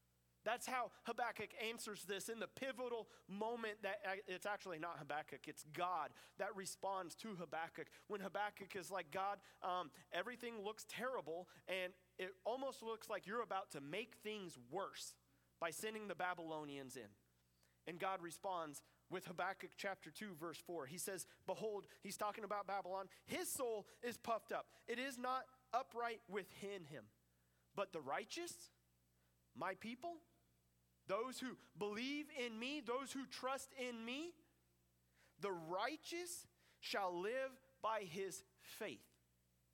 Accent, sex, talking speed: American, male, 140 wpm